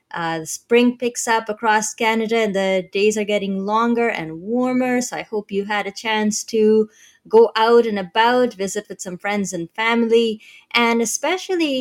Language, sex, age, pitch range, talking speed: English, female, 20-39, 185-240 Hz, 180 wpm